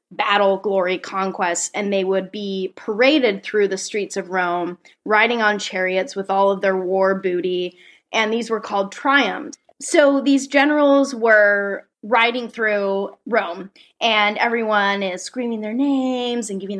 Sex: female